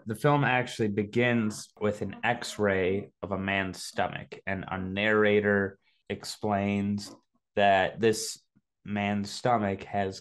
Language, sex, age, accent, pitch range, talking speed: English, male, 20-39, American, 95-115 Hz, 120 wpm